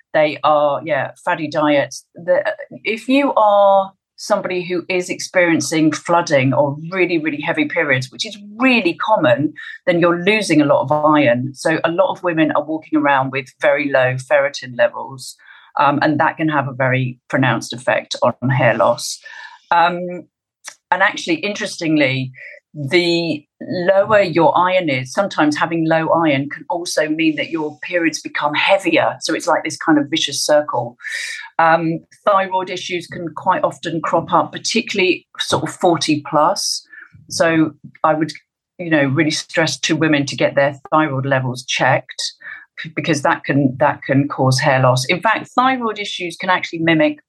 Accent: British